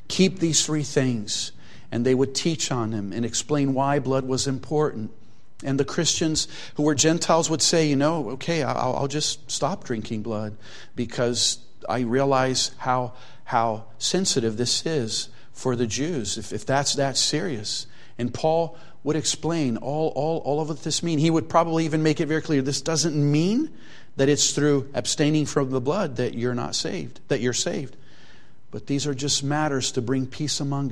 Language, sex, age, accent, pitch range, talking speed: English, male, 50-69, American, 115-145 Hz, 180 wpm